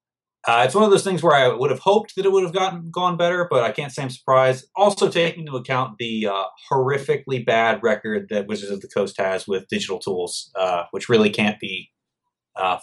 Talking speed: 225 wpm